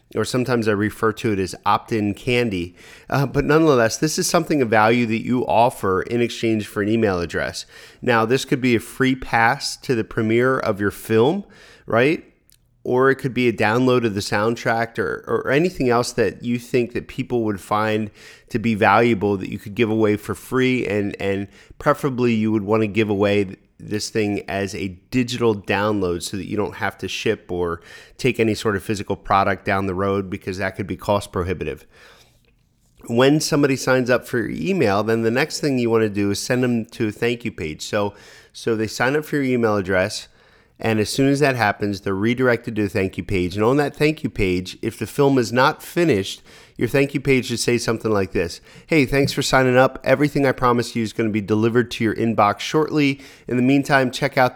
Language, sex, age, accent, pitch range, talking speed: English, male, 30-49, American, 105-130 Hz, 220 wpm